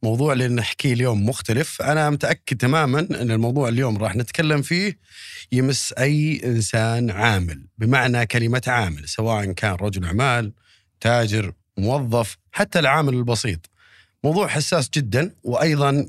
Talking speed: 125 wpm